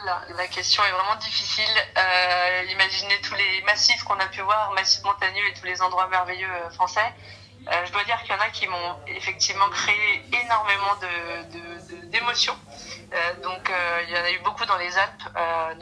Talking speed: 180 wpm